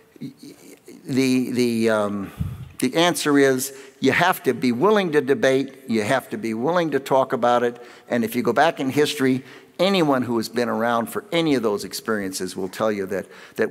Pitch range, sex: 120-170 Hz, male